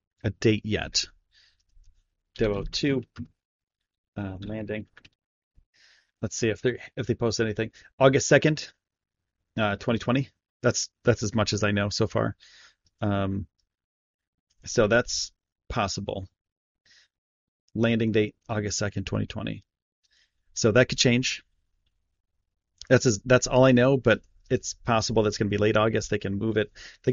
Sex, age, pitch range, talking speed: male, 30-49, 100-125 Hz, 140 wpm